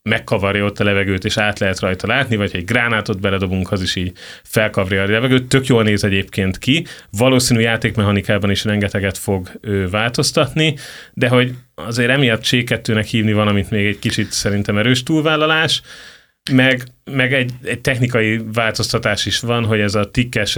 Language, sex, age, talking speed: Hungarian, male, 30-49, 165 wpm